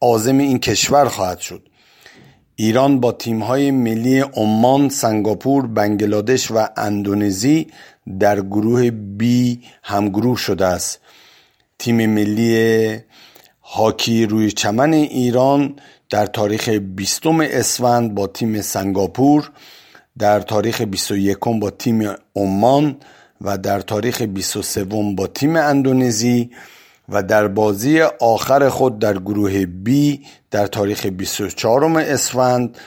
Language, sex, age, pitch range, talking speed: Persian, male, 50-69, 105-130 Hz, 110 wpm